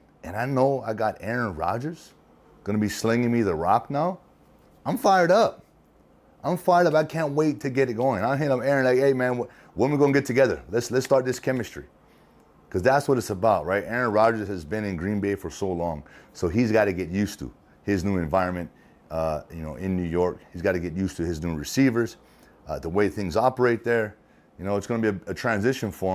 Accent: American